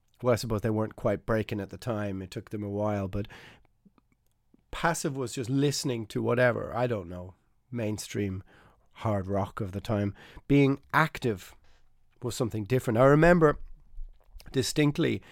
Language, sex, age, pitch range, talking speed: English, male, 30-49, 110-135 Hz, 155 wpm